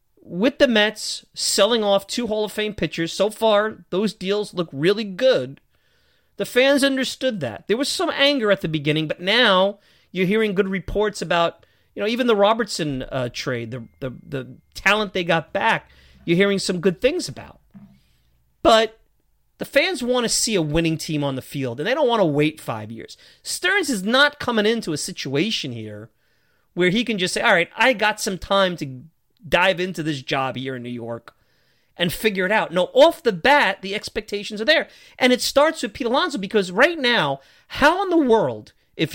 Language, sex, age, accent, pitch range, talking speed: English, male, 30-49, American, 155-245 Hz, 200 wpm